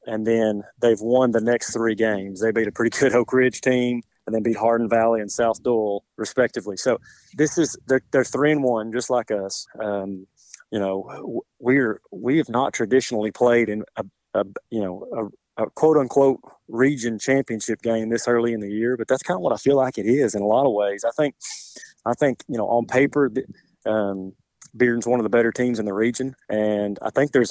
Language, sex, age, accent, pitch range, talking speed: English, male, 30-49, American, 110-130 Hz, 215 wpm